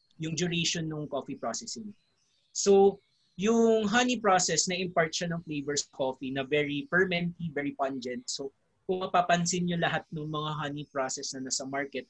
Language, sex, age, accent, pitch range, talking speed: English, male, 20-39, Filipino, 135-180 Hz, 160 wpm